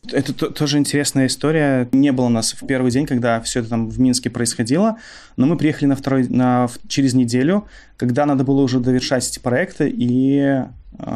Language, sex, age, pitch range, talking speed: Russian, male, 20-39, 120-140 Hz, 190 wpm